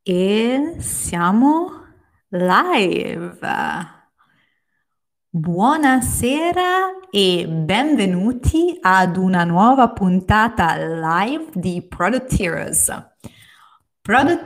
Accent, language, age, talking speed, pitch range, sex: native, Italian, 20-39, 60 wpm, 185-280 Hz, female